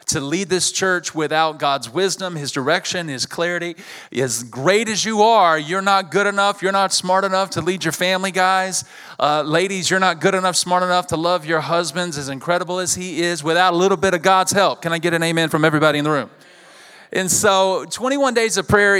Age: 40-59